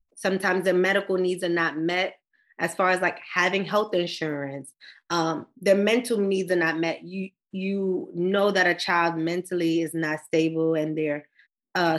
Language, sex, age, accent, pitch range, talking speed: English, female, 20-39, American, 165-195 Hz, 170 wpm